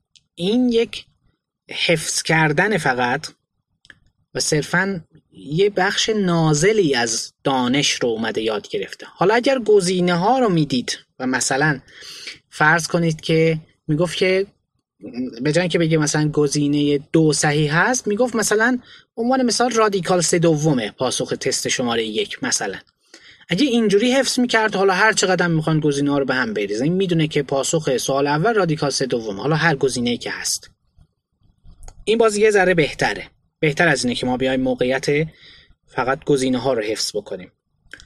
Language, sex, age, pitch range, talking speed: Persian, male, 20-39, 145-205 Hz, 155 wpm